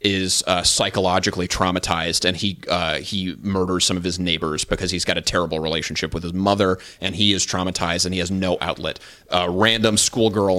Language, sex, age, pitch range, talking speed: English, male, 30-49, 90-115 Hz, 195 wpm